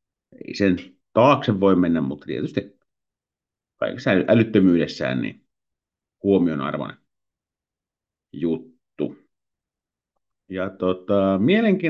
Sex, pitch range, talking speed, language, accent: male, 90-100 Hz, 65 wpm, Finnish, native